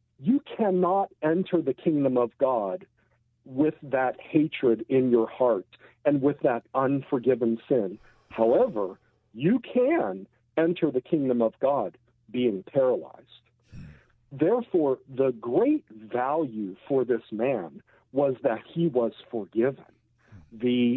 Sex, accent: male, American